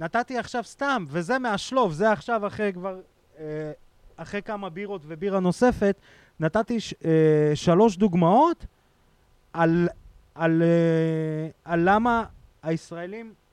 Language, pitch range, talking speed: Hebrew, 130-190 Hz, 100 wpm